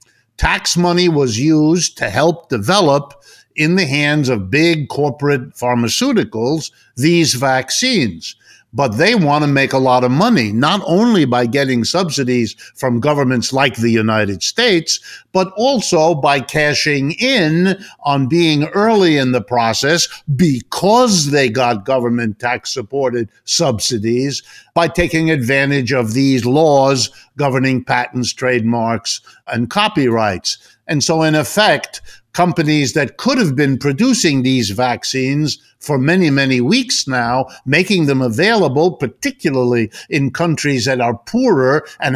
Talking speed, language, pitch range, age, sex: 130 wpm, English, 125-160 Hz, 50-69, male